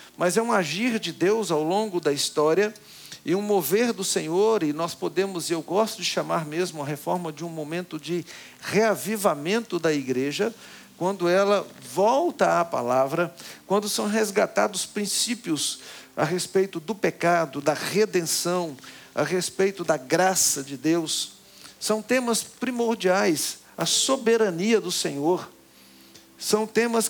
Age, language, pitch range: 50-69, Portuguese, 155-210 Hz